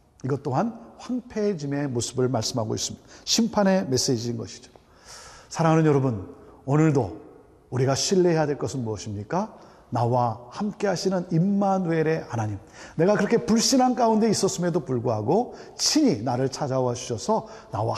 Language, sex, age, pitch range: Korean, male, 40-59, 135-220 Hz